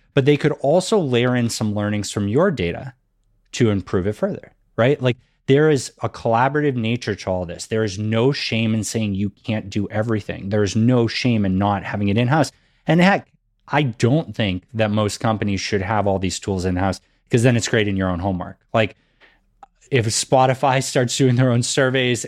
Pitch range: 105-135 Hz